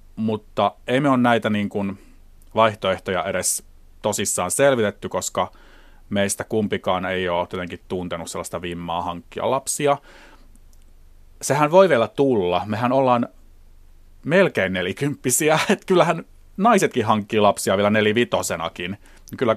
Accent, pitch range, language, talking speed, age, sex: native, 90-120 Hz, Finnish, 115 wpm, 30-49, male